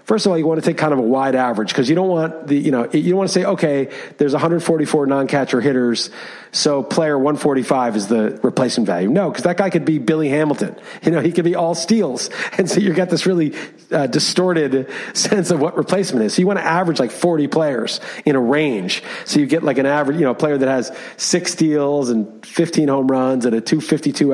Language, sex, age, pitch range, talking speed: English, male, 40-59, 135-180 Hz, 240 wpm